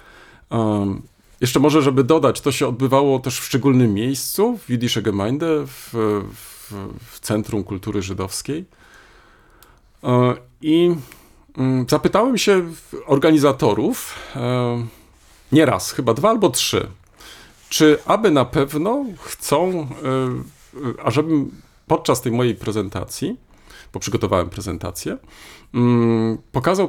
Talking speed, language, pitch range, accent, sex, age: 100 wpm, Polish, 105-150 Hz, native, male, 40-59